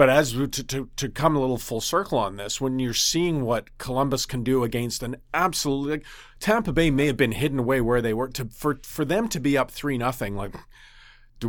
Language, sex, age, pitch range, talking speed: English, male, 40-59, 120-150 Hz, 235 wpm